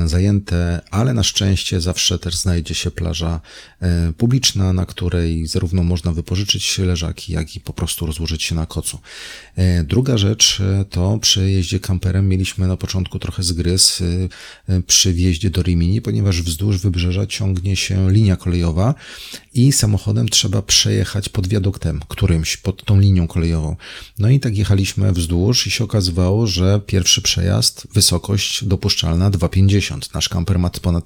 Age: 30-49